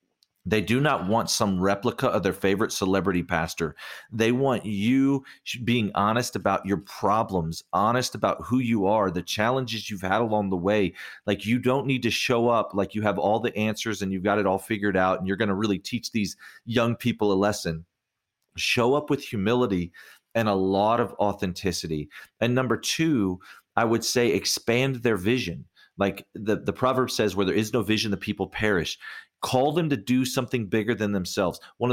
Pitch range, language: 100-125 Hz, English